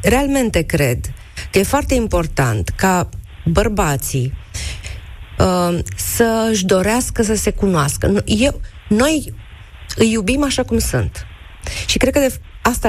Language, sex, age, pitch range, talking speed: Romanian, female, 30-49, 150-230 Hz, 125 wpm